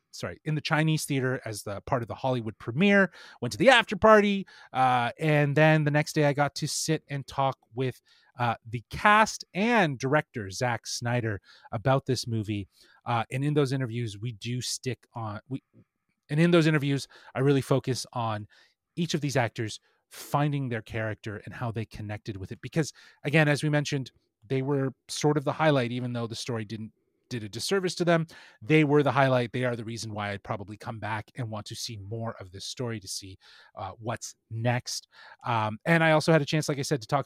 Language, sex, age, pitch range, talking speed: English, male, 30-49, 115-150 Hz, 210 wpm